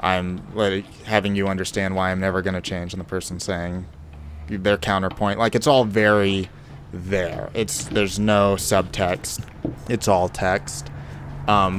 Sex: male